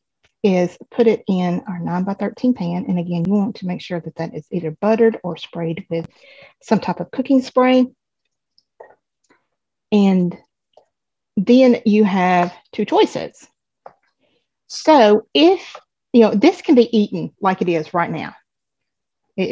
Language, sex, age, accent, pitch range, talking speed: English, female, 40-59, American, 180-225 Hz, 150 wpm